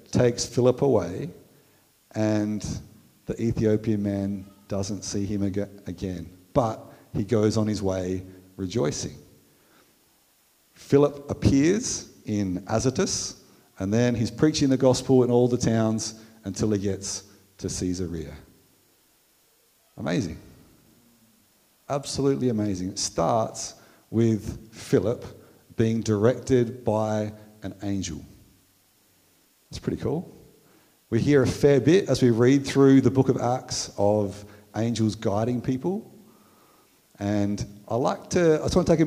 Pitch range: 100-130 Hz